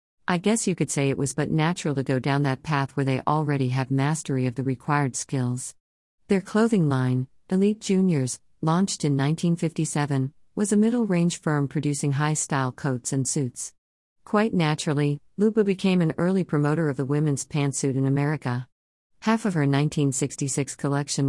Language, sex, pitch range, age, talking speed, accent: English, female, 130-165 Hz, 50-69, 165 wpm, American